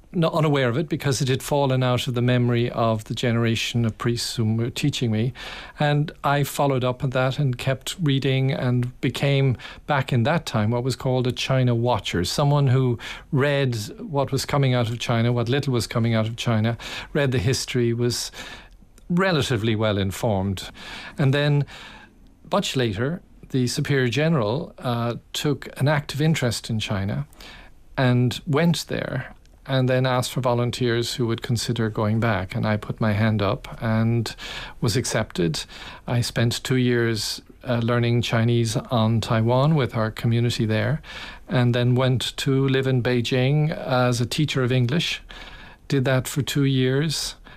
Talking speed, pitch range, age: 165 wpm, 115-140 Hz, 40-59